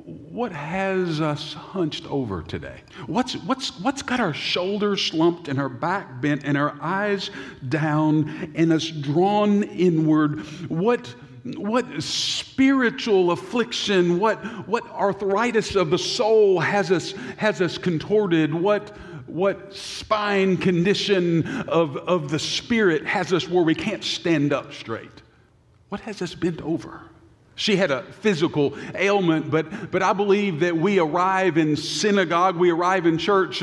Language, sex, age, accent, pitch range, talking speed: English, male, 50-69, American, 155-200 Hz, 140 wpm